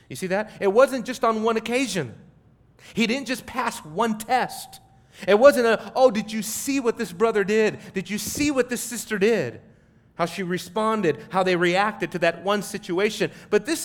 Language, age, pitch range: English, 40-59, 165-230 Hz